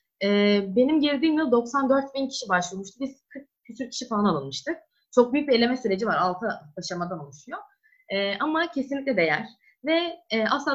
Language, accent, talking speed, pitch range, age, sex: Turkish, native, 160 wpm, 205-280 Hz, 20-39, female